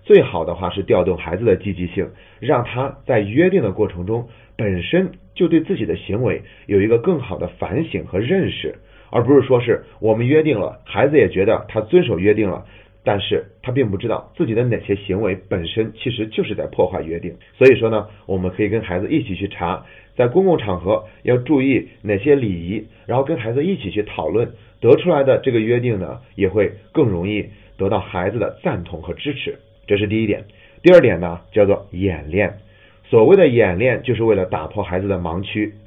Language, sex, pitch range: Chinese, male, 95-125 Hz